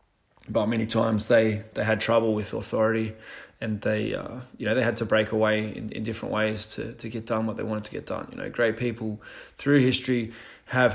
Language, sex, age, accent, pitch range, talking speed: English, male, 20-39, Australian, 110-120 Hz, 220 wpm